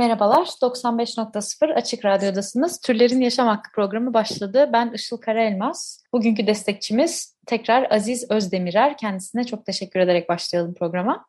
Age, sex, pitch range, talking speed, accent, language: 30-49, female, 190-235 Hz, 120 wpm, native, Turkish